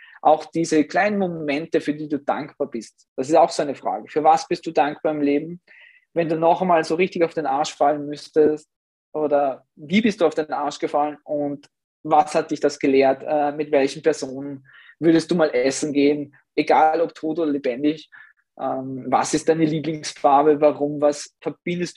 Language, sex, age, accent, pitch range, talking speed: German, male, 20-39, German, 140-160 Hz, 185 wpm